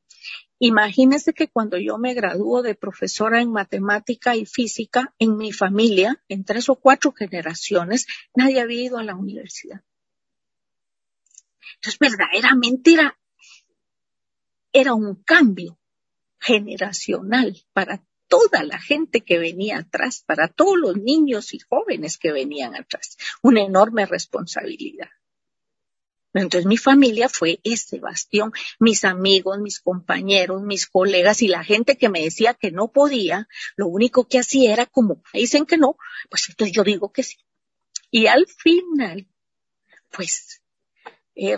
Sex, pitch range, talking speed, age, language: female, 200-265 Hz, 135 wpm, 40-59, Spanish